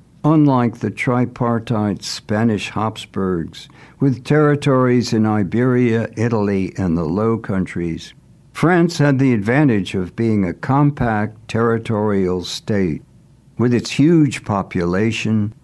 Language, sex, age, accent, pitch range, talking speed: English, male, 60-79, American, 105-140 Hz, 105 wpm